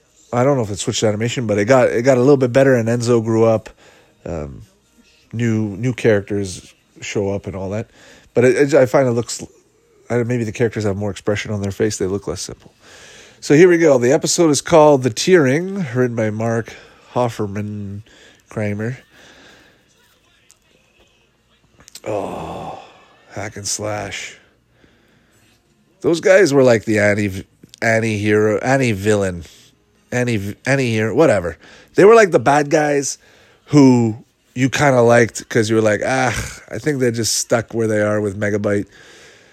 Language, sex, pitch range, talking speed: English, male, 105-125 Hz, 160 wpm